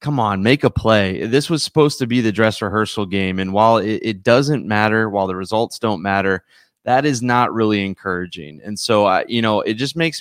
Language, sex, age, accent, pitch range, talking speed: English, male, 20-39, American, 100-125 Hz, 225 wpm